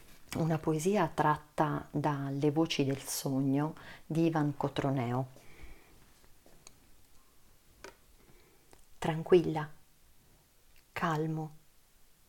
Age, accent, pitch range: 40-59, native, 150-180 Hz